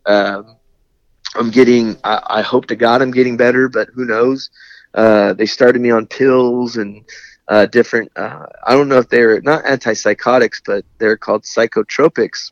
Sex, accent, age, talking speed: male, American, 30-49, 170 wpm